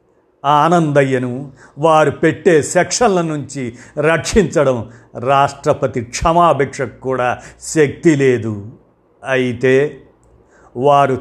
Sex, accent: male, native